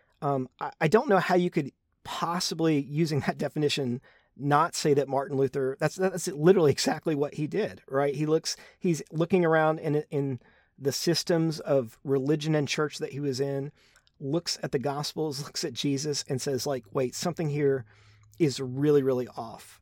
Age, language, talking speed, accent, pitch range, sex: 40-59, English, 175 wpm, American, 130-155 Hz, male